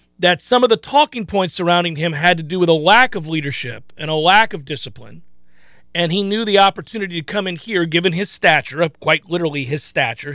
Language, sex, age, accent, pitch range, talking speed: English, male, 40-59, American, 150-205 Hz, 215 wpm